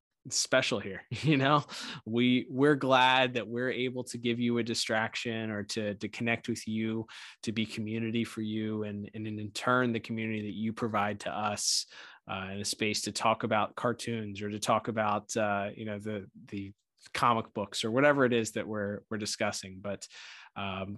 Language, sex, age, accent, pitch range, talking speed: English, male, 20-39, American, 105-120 Hz, 190 wpm